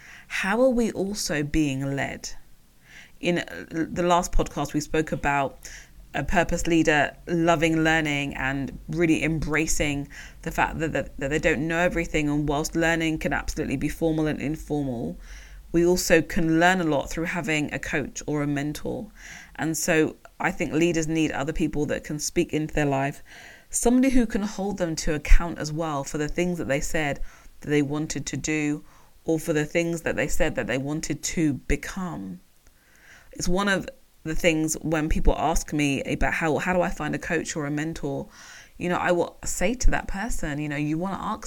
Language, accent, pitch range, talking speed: English, British, 145-170 Hz, 190 wpm